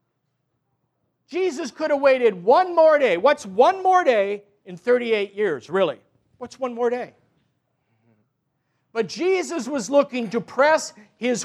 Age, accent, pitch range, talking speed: 50-69, American, 200-275 Hz, 135 wpm